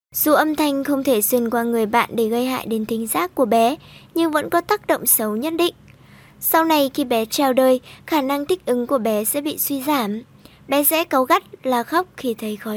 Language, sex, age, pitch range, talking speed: Vietnamese, male, 20-39, 240-315 Hz, 235 wpm